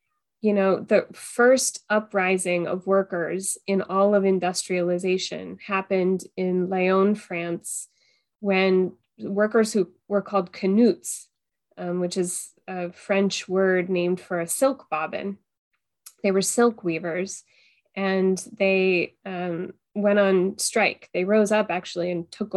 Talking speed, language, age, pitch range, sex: 125 wpm, English, 20-39, 180-200 Hz, female